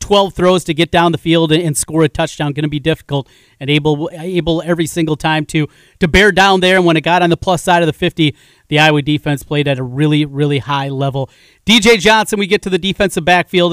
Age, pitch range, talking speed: 30-49, 155-180 Hz, 240 wpm